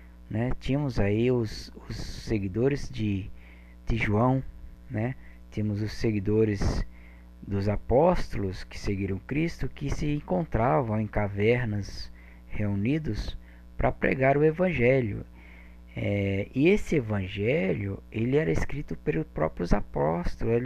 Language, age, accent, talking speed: Portuguese, 10-29, Brazilian, 110 wpm